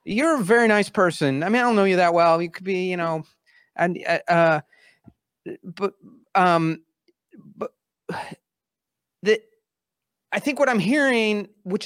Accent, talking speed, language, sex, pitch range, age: American, 150 wpm, English, male, 170-215 Hz, 30-49